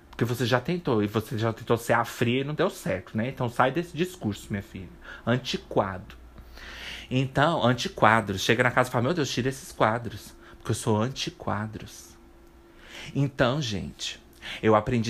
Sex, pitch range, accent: male, 110-140 Hz, Brazilian